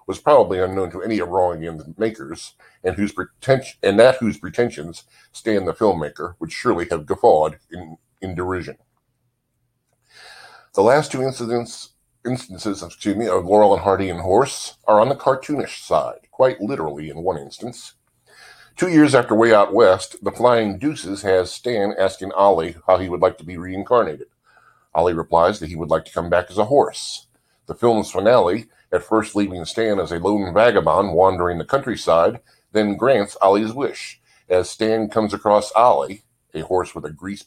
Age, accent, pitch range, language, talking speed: 50-69, American, 85-110 Hz, English, 175 wpm